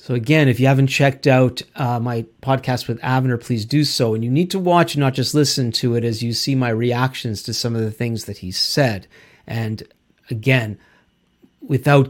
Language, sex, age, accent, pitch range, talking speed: English, male, 40-59, American, 125-165 Hz, 205 wpm